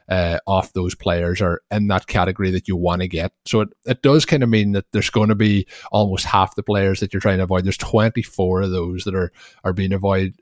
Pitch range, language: 95-105 Hz, English